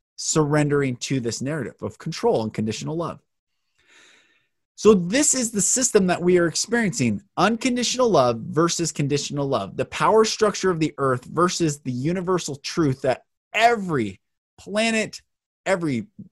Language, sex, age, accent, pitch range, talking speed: English, male, 20-39, American, 125-180 Hz, 135 wpm